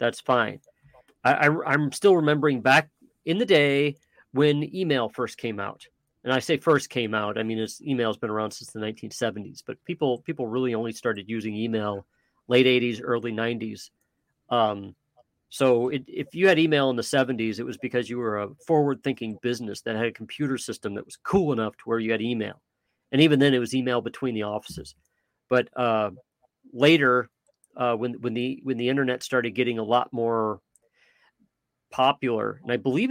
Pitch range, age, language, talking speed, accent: 115-140 Hz, 40-59, English, 185 wpm, American